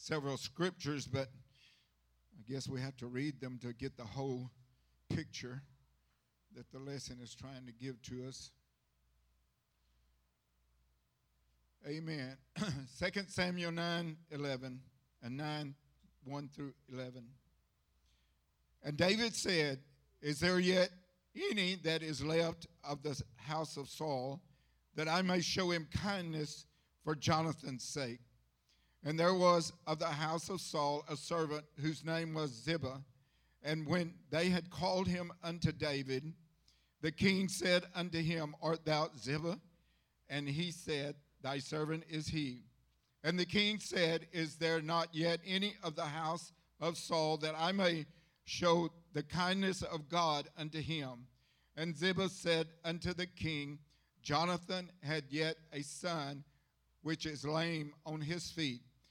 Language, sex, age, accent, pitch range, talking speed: English, male, 60-79, American, 130-165 Hz, 140 wpm